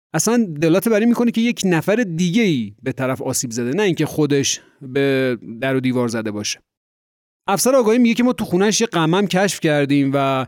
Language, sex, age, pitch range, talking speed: Persian, male, 30-49, 130-185 Hz, 190 wpm